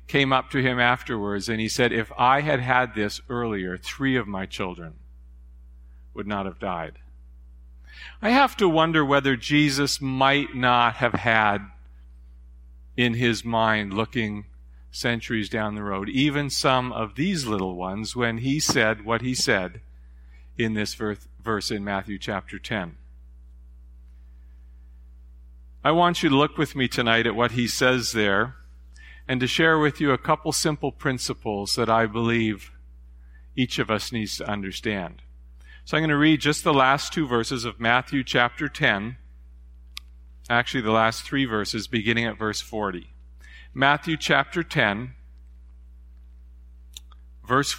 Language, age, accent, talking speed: English, 50-69, American, 145 wpm